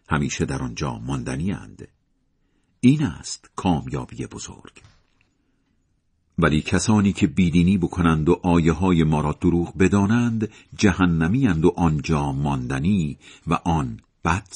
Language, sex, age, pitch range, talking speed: Persian, male, 50-69, 80-120 Hz, 115 wpm